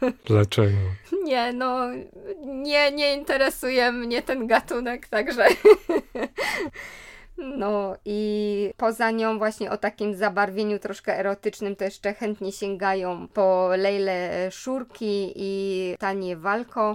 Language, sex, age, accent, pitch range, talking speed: Polish, female, 20-39, native, 195-215 Hz, 105 wpm